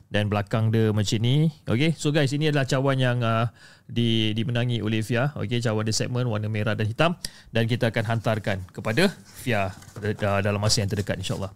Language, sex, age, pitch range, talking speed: Malay, male, 30-49, 115-160 Hz, 185 wpm